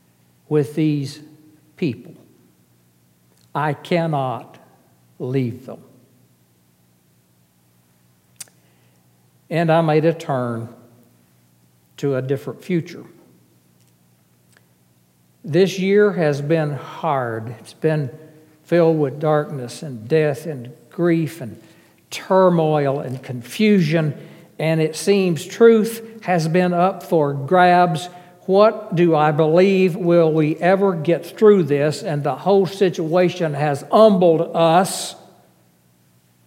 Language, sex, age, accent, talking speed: English, male, 60-79, American, 100 wpm